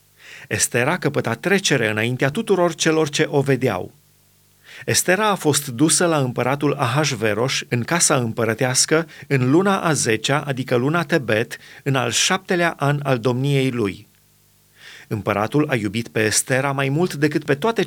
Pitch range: 130-160 Hz